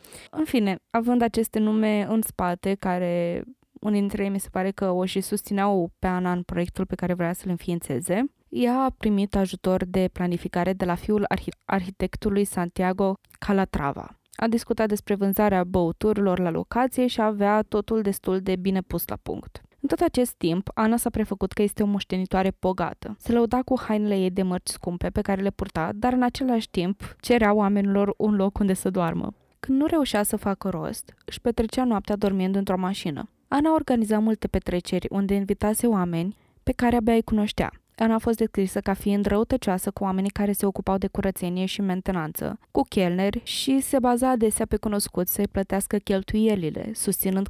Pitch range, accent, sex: 185-220 Hz, native, female